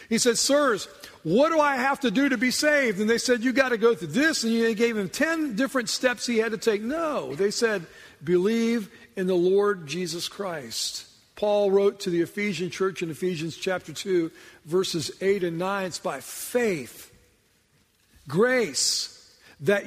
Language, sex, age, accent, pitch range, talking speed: English, male, 50-69, American, 180-230 Hz, 180 wpm